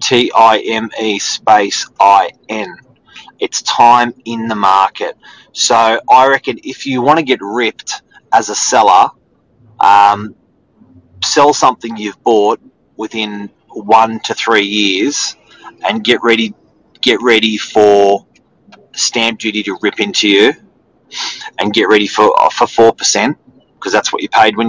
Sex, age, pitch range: male, 30-49, 100-120 Hz